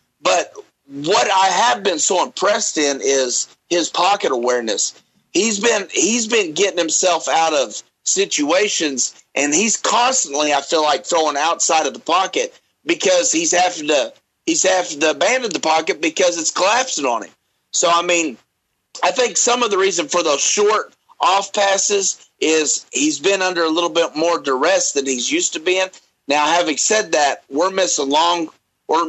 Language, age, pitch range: English, 40-59, 155-210 Hz